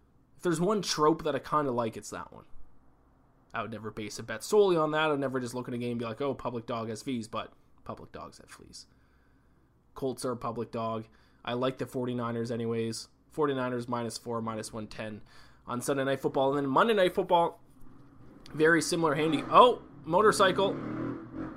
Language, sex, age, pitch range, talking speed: English, male, 20-39, 115-135 Hz, 190 wpm